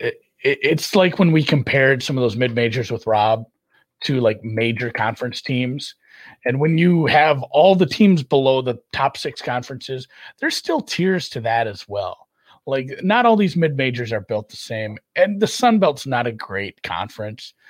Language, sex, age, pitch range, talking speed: English, male, 30-49, 115-150 Hz, 175 wpm